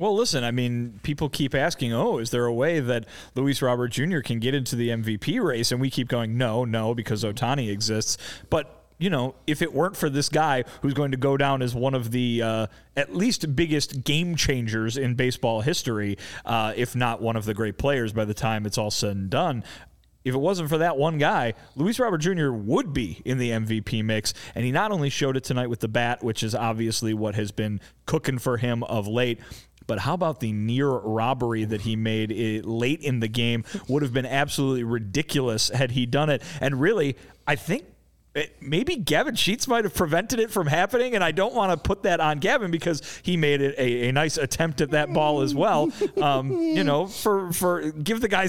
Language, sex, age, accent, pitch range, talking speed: English, male, 30-49, American, 115-155 Hz, 215 wpm